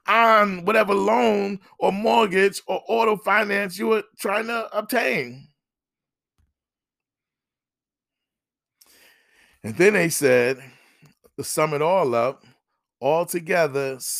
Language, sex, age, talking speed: English, male, 40-59, 95 wpm